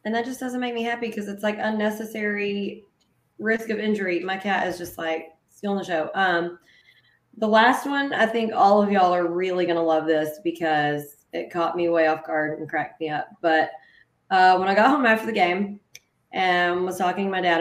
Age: 20-39